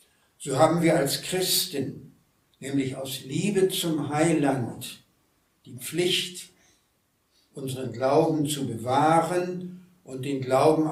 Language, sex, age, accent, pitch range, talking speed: German, male, 70-89, German, 135-185 Hz, 105 wpm